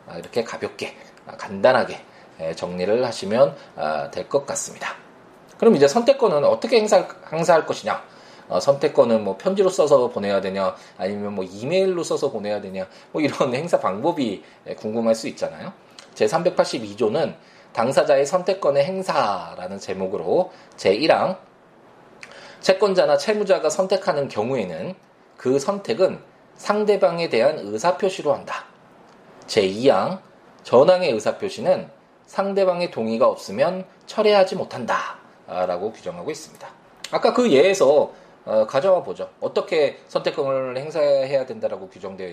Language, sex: Korean, male